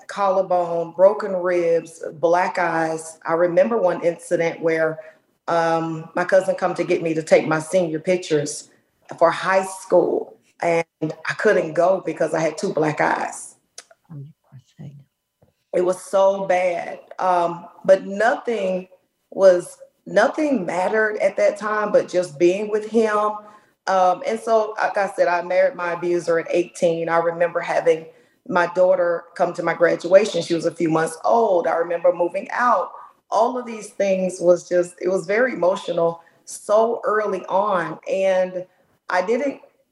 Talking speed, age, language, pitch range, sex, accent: 150 wpm, 40-59, English, 165-195 Hz, female, American